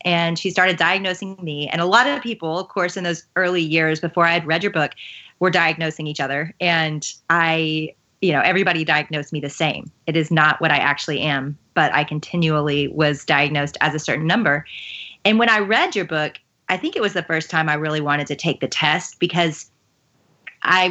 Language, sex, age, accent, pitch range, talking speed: English, female, 30-49, American, 155-205 Hz, 210 wpm